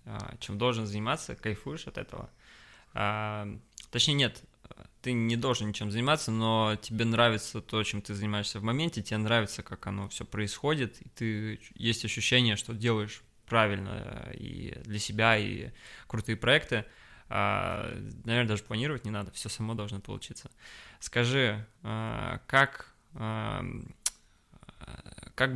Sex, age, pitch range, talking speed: male, 20-39, 105-120 Hz, 125 wpm